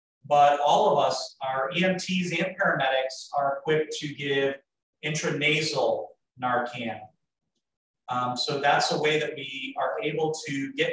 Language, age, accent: English, 30-49, American